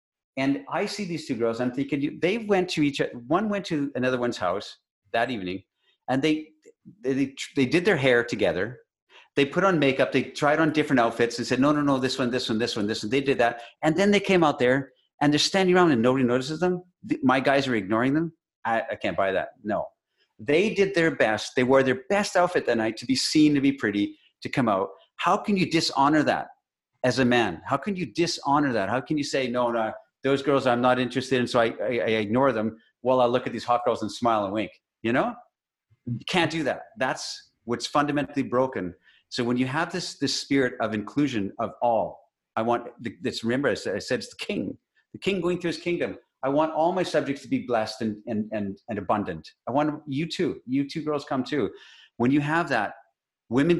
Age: 50-69